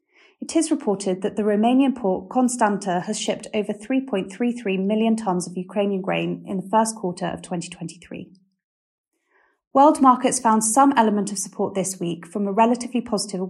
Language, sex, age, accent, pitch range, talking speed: English, female, 30-49, British, 190-245 Hz, 160 wpm